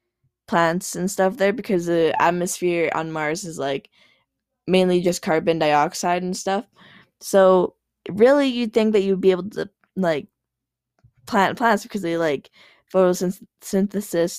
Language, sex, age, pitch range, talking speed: English, female, 10-29, 170-205 Hz, 140 wpm